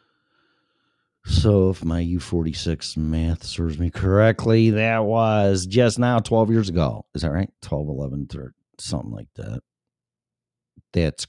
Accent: American